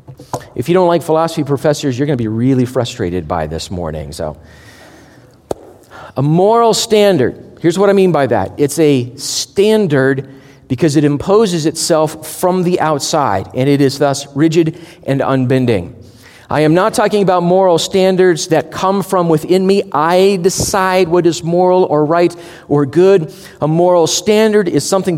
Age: 40-59